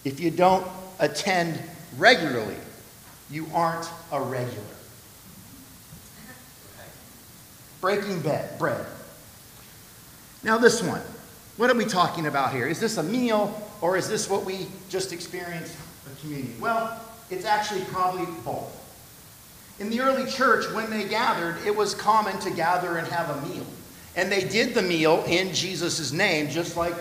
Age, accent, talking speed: 50-69, American, 145 wpm